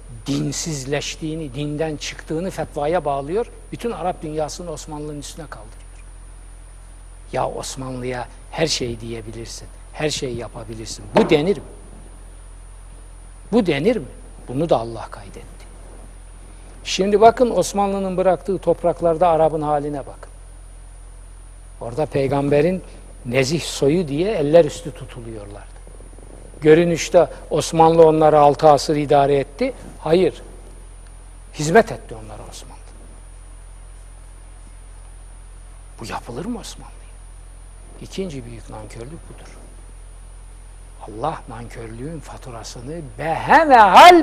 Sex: male